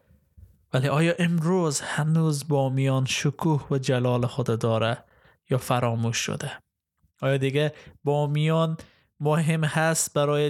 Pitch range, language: 125-150 Hz, Persian